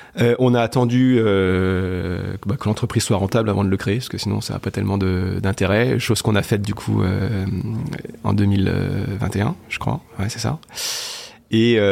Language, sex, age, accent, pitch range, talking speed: French, male, 30-49, French, 100-120 Hz, 200 wpm